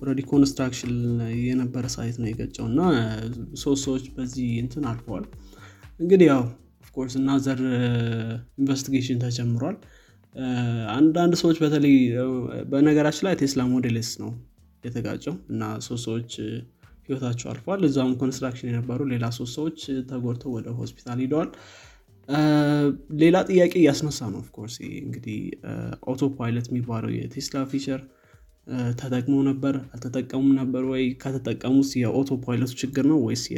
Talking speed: 100 wpm